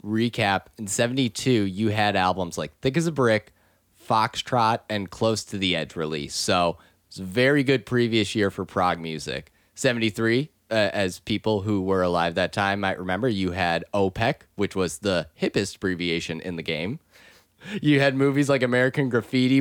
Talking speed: 170 wpm